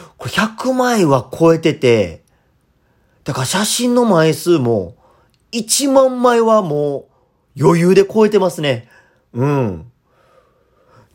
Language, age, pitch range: Japanese, 40-59, 125-190 Hz